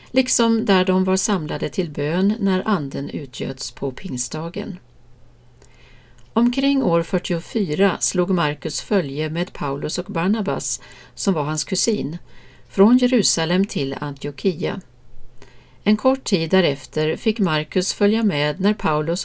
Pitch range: 155-205 Hz